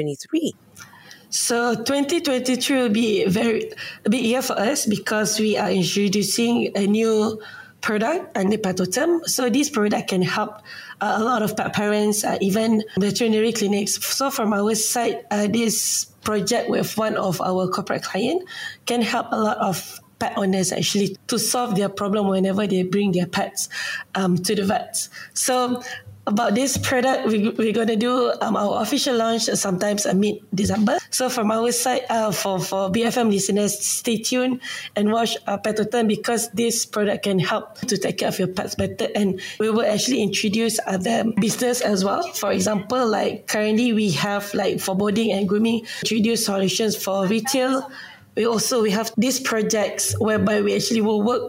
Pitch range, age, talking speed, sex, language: 200-240 Hz, 20-39, 165 wpm, female, English